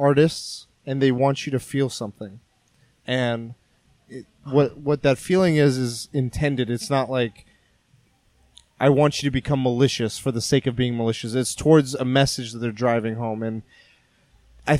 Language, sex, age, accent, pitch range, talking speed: English, male, 20-39, American, 120-145 Hz, 165 wpm